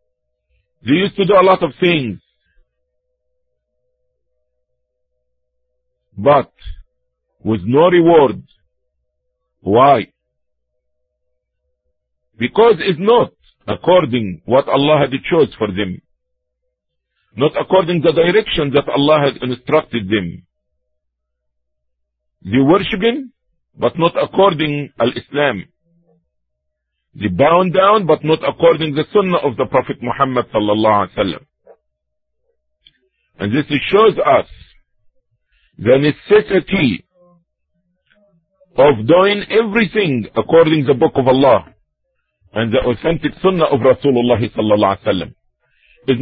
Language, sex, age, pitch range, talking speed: English, male, 50-69, 120-180 Hz, 105 wpm